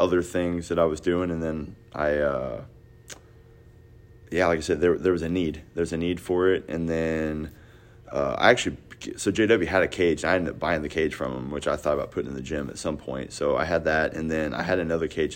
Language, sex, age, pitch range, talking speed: English, male, 30-49, 80-90 Hz, 250 wpm